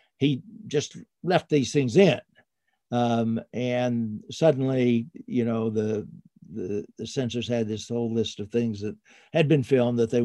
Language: English